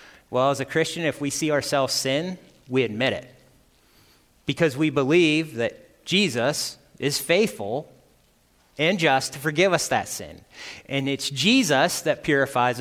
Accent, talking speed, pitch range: American, 145 wpm, 145-195 Hz